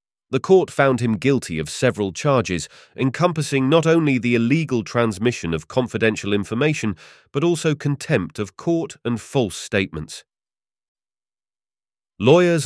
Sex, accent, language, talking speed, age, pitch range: male, British, English, 125 wpm, 30-49, 90-130 Hz